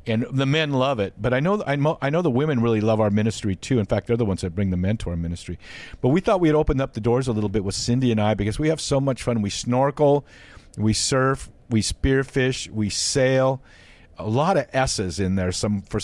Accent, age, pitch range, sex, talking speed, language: American, 50-69, 105-125 Hz, male, 245 wpm, English